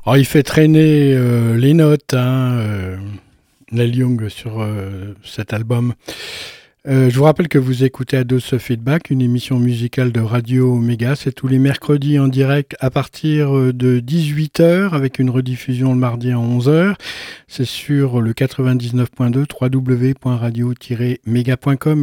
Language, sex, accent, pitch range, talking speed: French, male, French, 125-150 Hz, 145 wpm